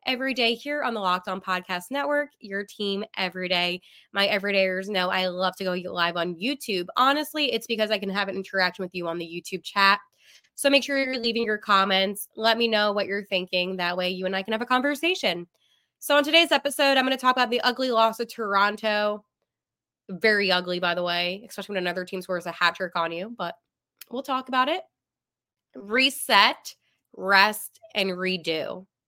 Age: 20-39